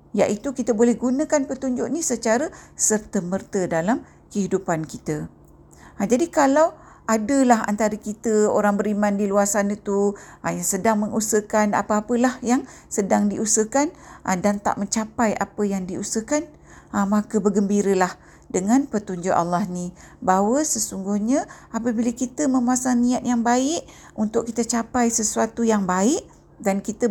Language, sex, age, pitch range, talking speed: Malay, female, 50-69, 185-240 Hz, 135 wpm